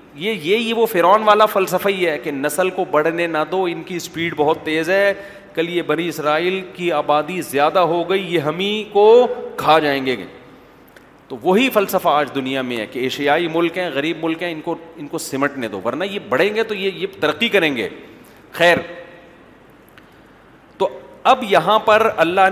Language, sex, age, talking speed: Urdu, male, 40-59, 190 wpm